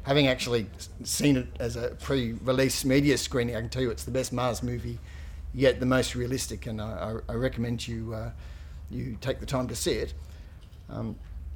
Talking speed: 185 wpm